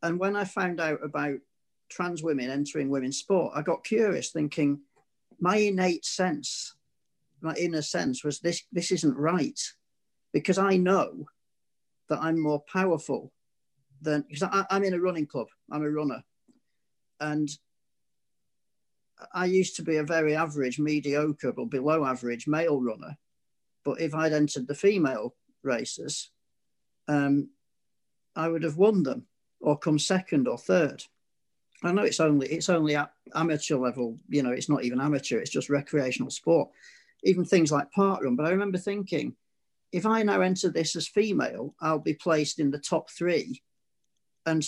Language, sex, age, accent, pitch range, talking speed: English, male, 40-59, British, 145-180 Hz, 160 wpm